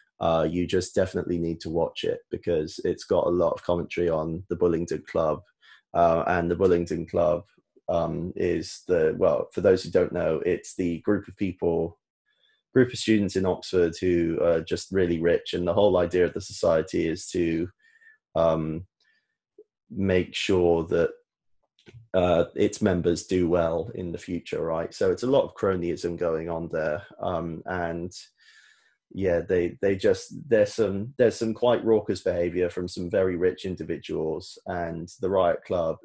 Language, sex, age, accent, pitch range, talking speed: English, male, 20-39, British, 85-125 Hz, 170 wpm